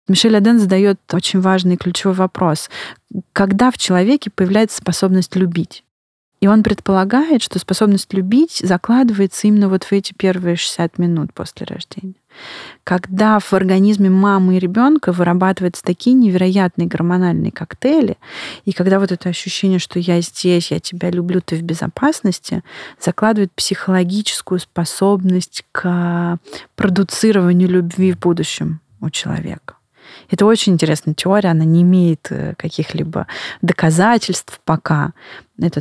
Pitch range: 175-200 Hz